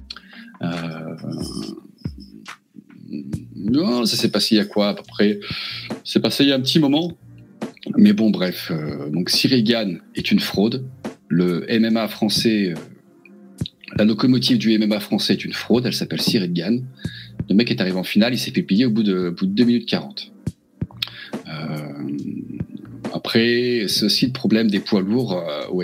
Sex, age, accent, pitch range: male, 40-59, French, 90-130 Hz